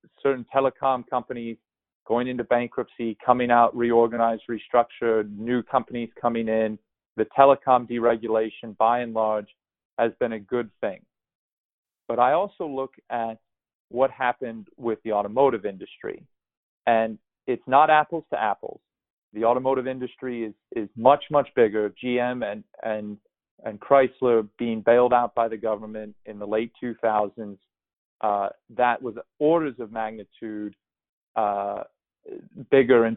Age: 40-59